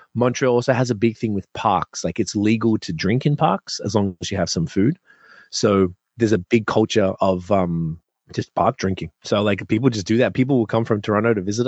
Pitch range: 95-115 Hz